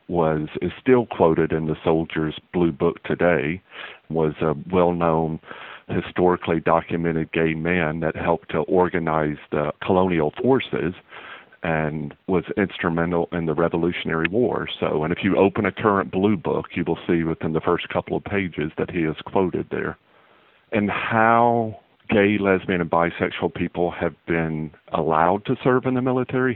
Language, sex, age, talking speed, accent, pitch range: English, male, 50-69, 155 wpm, American, 80-95 Hz